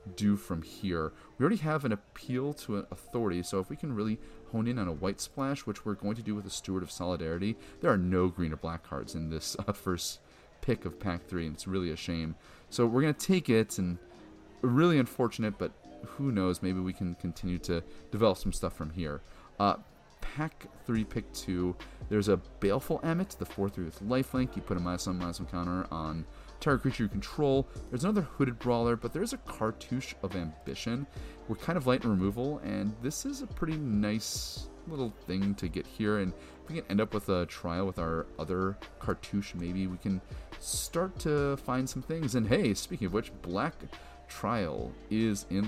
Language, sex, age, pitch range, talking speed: English, male, 30-49, 85-120 Hz, 210 wpm